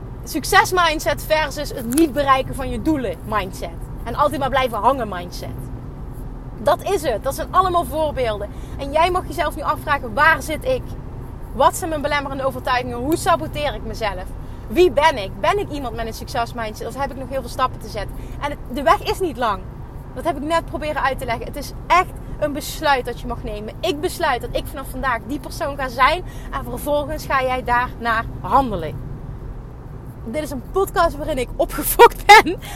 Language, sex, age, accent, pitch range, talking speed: Dutch, female, 30-49, Dutch, 235-330 Hz, 195 wpm